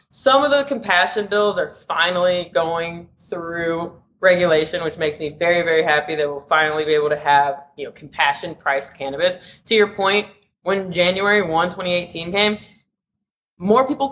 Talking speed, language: 155 wpm, English